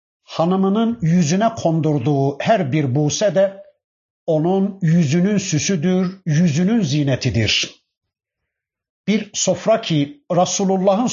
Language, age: Turkish, 60-79